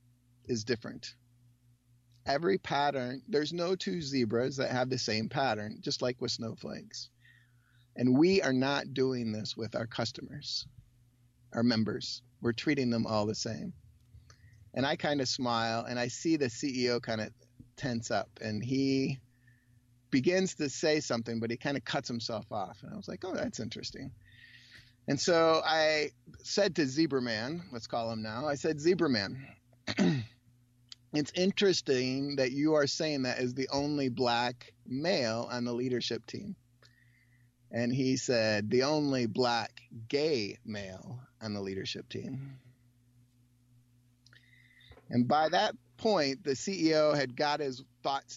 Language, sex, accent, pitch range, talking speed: English, male, American, 120-140 Hz, 150 wpm